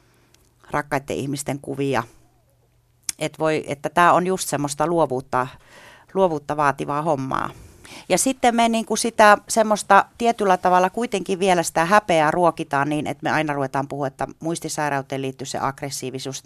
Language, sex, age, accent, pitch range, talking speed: Finnish, female, 40-59, native, 135-160 Hz, 130 wpm